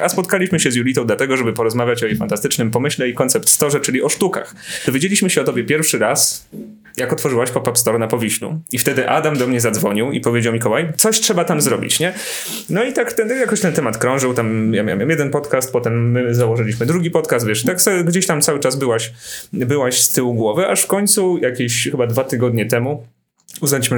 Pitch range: 115-165 Hz